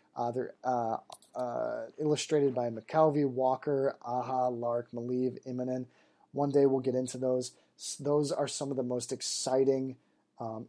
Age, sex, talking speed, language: 30-49, male, 150 wpm, English